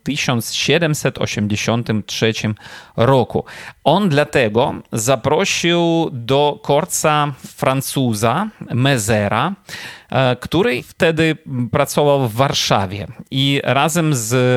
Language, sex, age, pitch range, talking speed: Polish, male, 30-49, 115-145 Hz, 70 wpm